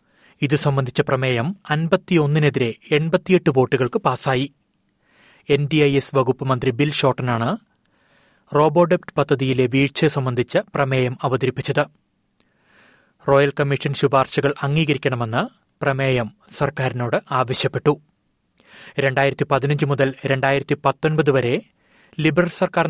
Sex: male